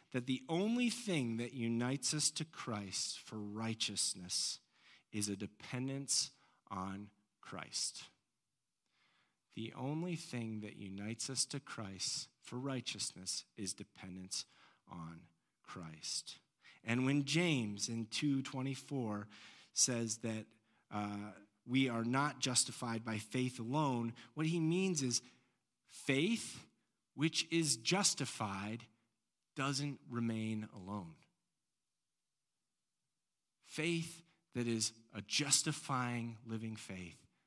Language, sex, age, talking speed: English, male, 40-59, 100 wpm